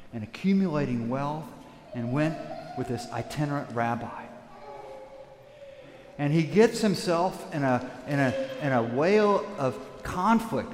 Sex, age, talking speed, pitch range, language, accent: male, 50-69, 125 wpm, 135-210 Hz, English, American